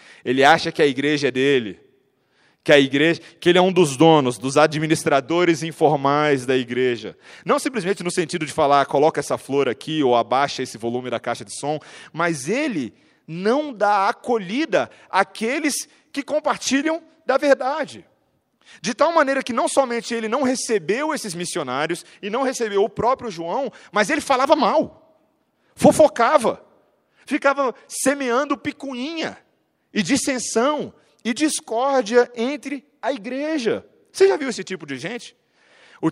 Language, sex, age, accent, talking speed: Portuguese, male, 40-59, Brazilian, 145 wpm